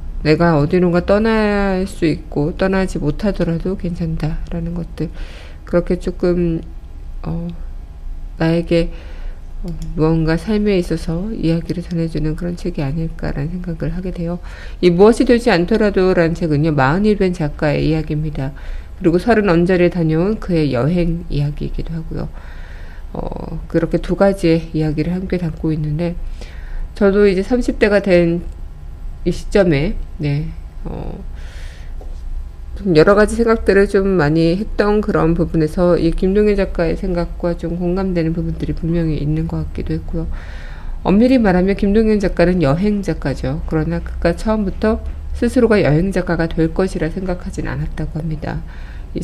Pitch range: 150-185 Hz